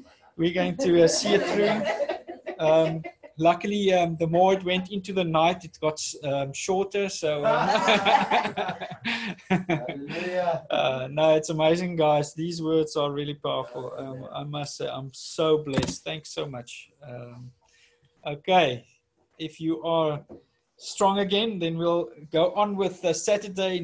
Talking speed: 145 wpm